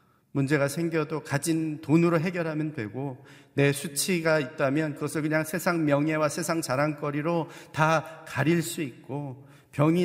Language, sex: Korean, male